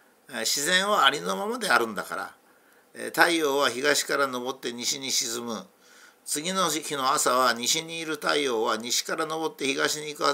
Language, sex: Japanese, male